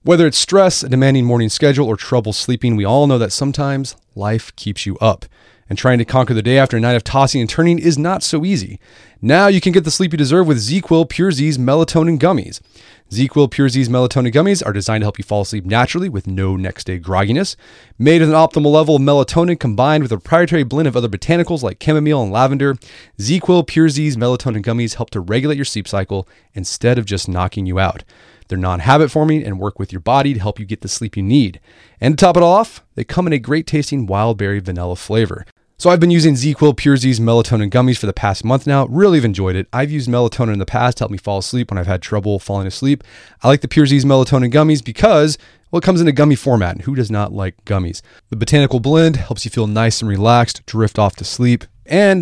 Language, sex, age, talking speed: English, male, 30-49, 240 wpm